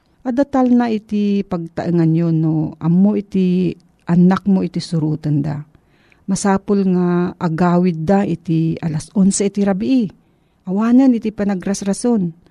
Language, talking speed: Filipino, 125 wpm